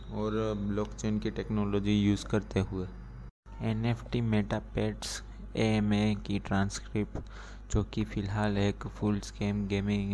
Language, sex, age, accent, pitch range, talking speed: Hindi, male, 20-39, native, 100-105 Hz, 120 wpm